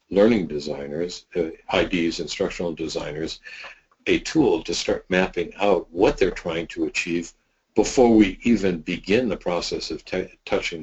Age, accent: 60-79, American